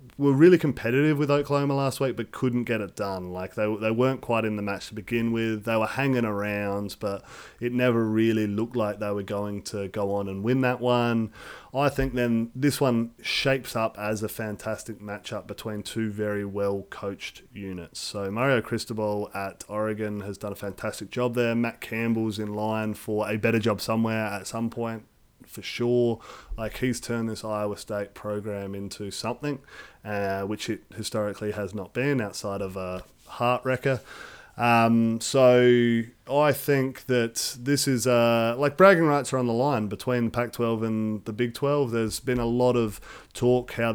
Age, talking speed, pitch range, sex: 30-49, 185 wpm, 105-125 Hz, male